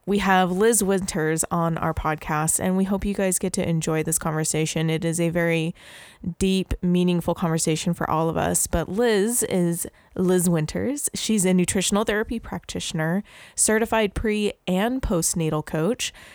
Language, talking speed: English, 160 wpm